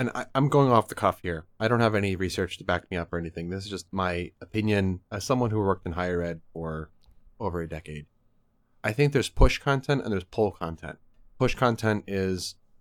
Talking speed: 220 wpm